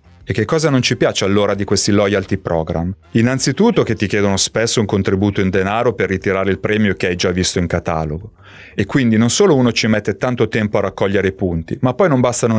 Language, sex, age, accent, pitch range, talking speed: Italian, male, 30-49, native, 95-120 Hz, 225 wpm